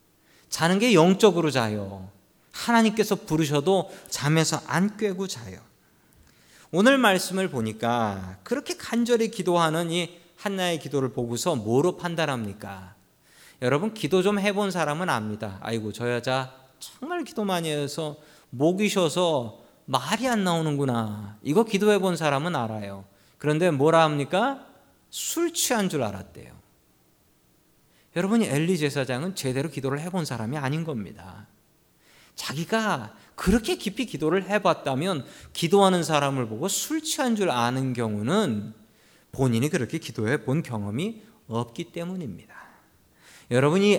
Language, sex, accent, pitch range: Korean, male, native, 130-195 Hz